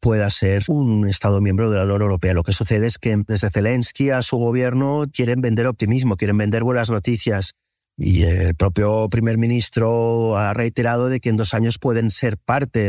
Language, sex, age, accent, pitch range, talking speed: Spanish, male, 30-49, Spanish, 95-120 Hz, 190 wpm